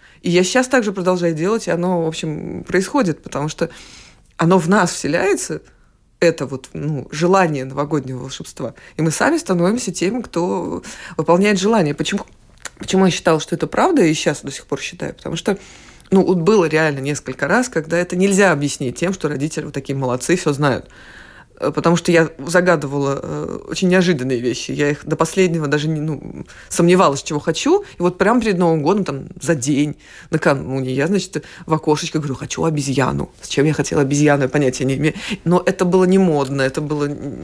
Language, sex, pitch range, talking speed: Russian, female, 145-185 Hz, 180 wpm